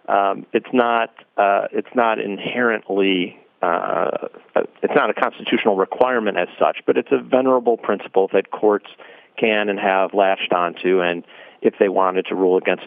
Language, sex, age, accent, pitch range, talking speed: English, male, 40-59, American, 100-125 Hz, 160 wpm